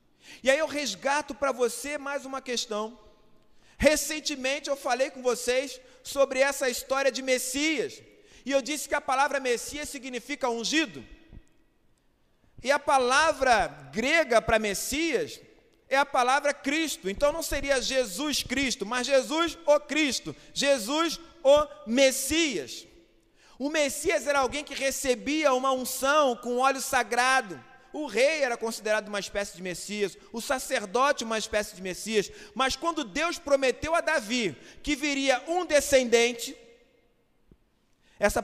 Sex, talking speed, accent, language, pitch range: male, 135 wpm, Brazilian, Portuguese, 235-290 Hz